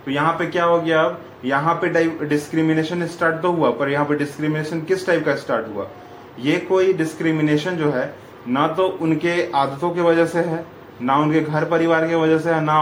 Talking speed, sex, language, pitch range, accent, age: 205 wpm, male, English, 135-165 Hz, Indian, 20-39